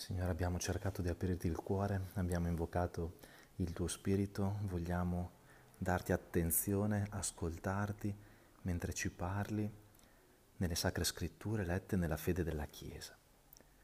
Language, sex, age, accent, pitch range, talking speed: Italian, male, 40-59, native, 85-105 Hz, 115 wpm